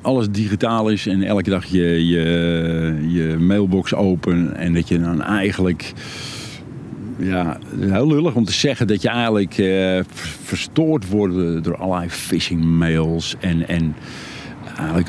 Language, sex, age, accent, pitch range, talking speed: Dutch, male, 50-69, Dutch, 95-125 Hz, 135 wpm